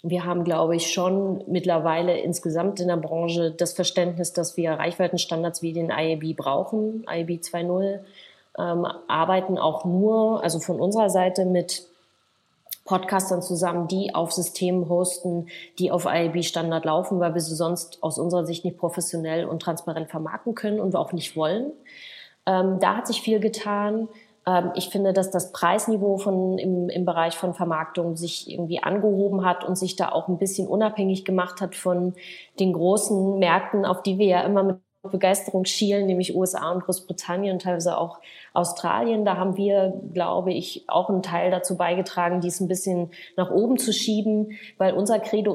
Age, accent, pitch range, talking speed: 30-49, German, 175-195 Hz, 165 wpm